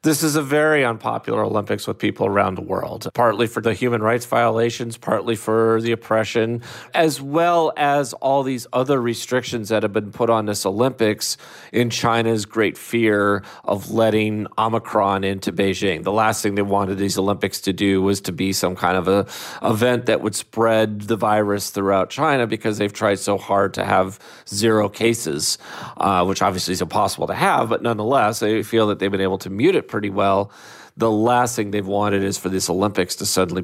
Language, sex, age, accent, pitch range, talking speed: English, male, 40-59, American, 100-120 Hz, 195 wpm